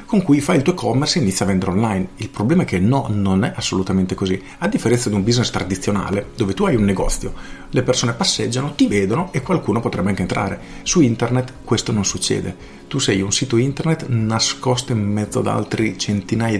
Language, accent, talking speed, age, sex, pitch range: Italian, native, 205 wpm, 40-59, male, 100-130 Hz